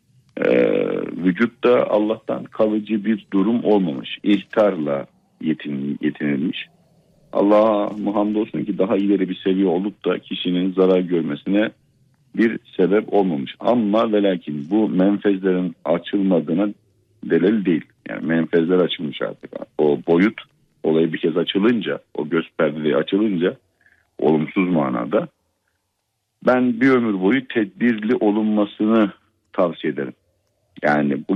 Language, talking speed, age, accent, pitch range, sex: Turkish, 110 wpm, 50-69, native, 90-100 Hz, male